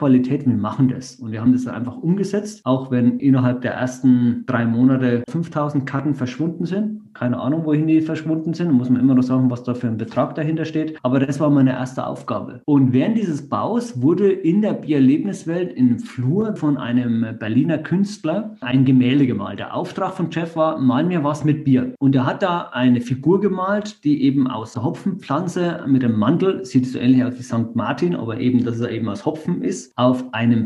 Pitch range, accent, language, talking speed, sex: 125-160 Hz, German, German, 200 wpm, male